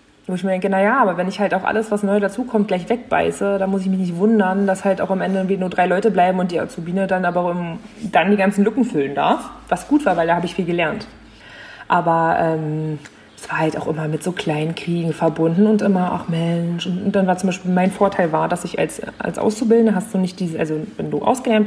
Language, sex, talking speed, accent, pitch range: German, female, 260 wpm, German, 180-220 Hz